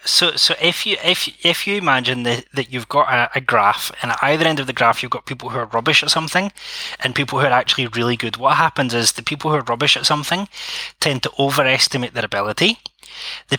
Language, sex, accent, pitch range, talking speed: English, male, British, 120-145 Hz, 235 wpm